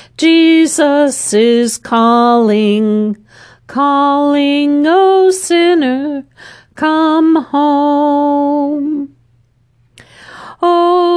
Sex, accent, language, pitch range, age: female, American, English, 270-325 Hz, 40-59